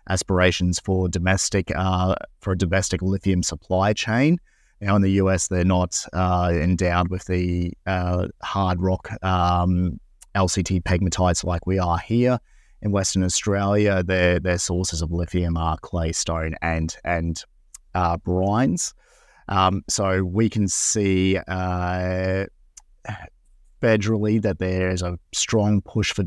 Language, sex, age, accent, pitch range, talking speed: English, male, 30-49, Australian, 90-100 Hz, 135 wpm